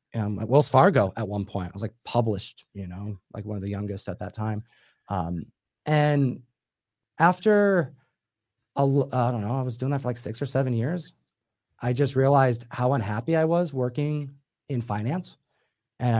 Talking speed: 185 wpm